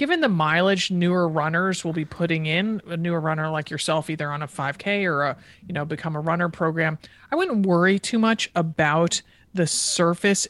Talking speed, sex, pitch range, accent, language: 195 wpm, male, 155-185 Hz, American, English